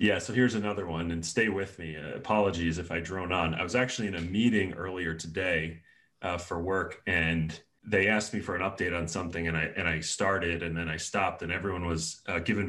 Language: English